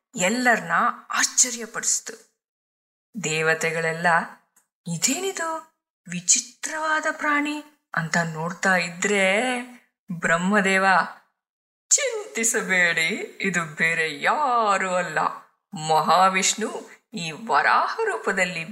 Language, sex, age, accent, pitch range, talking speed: Kannada, female, 20-39, native, 175-255 Hz, 60 wpm